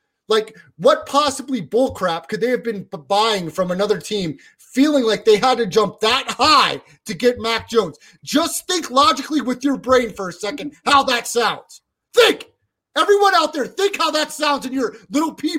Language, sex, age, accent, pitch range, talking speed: English, male, 30-49, American, 230-300 Hz, 190 wpm